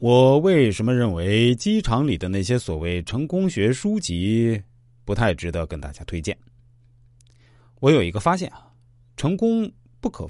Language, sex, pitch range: Chinese, male, 95-130 Hz